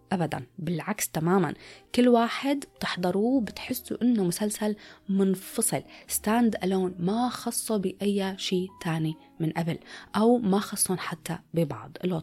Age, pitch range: 20-39, 170-235 Hz